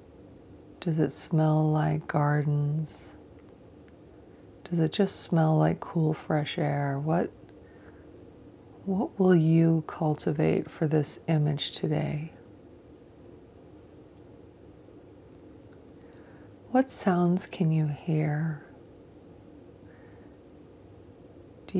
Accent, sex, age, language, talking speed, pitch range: American, female, 30-49, English, 75 wpm, 145-170 Hz